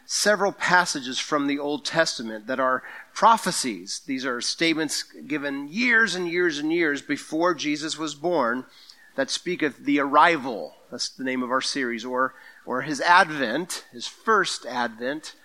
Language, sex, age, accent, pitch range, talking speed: English, male, 40-59, American, 135-180 Hz, 155 wpm